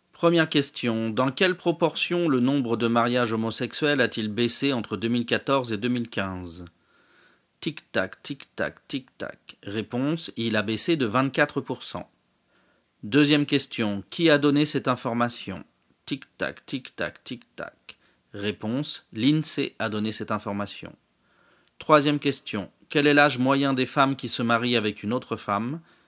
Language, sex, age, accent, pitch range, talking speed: English, male, 40-59, French, 110-145 Hz, 130 wpm